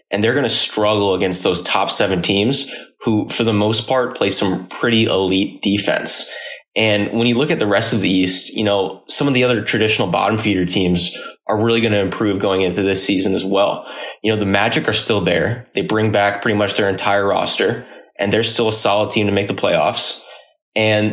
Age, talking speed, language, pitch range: 20-39, 220 wpm, English, 100-115 Hz